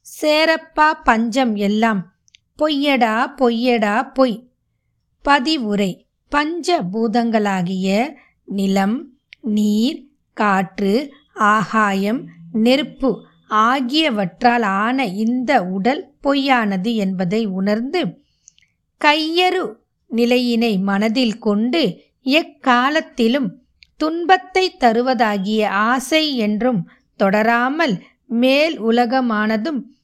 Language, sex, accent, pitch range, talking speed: Tamil, female, native, 215-275 Hz, 65 wpm